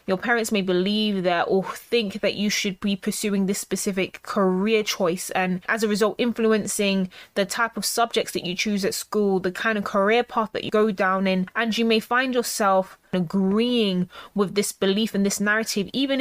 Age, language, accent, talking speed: 20-39, English, British, 195 wpm